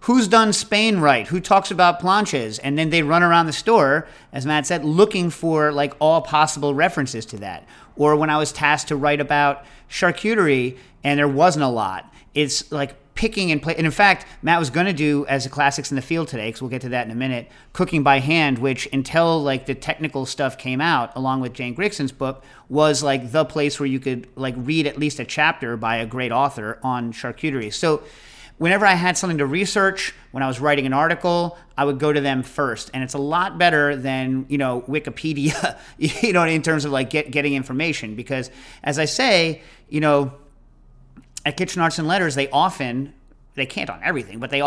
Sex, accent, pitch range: male, American, 130-155 Hz